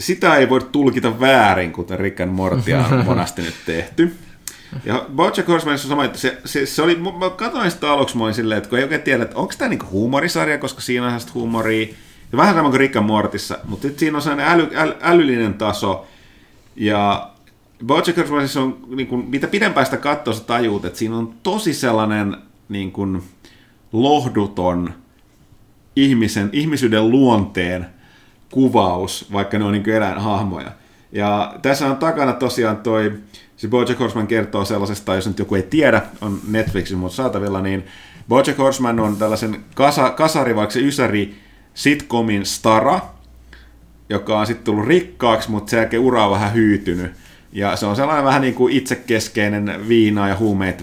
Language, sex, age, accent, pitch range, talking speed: Finnish, male, 30-49, native, 100-135 Hz, 160 wpm